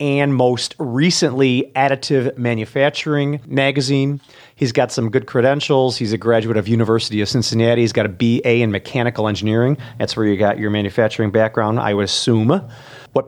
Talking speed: 165 wpm